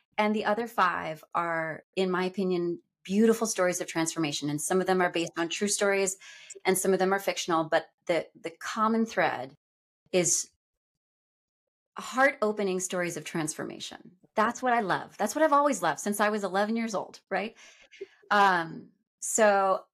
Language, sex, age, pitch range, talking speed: English, female, 20-39, 170-205 Hz, 170 wpm